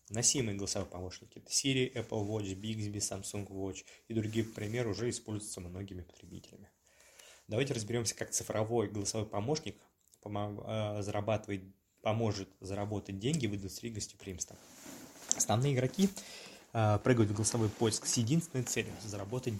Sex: male